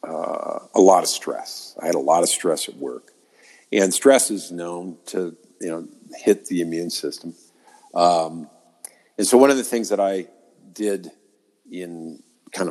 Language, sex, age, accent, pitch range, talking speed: English, male, 50-69, American, 80-105 Hz, 170 wpm